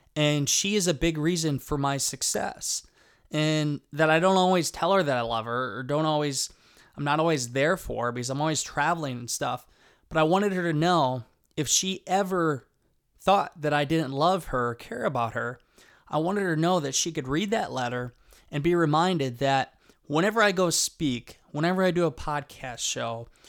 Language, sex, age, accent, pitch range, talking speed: English, male, 20-39, American, 135-175 Hz, 200 wpm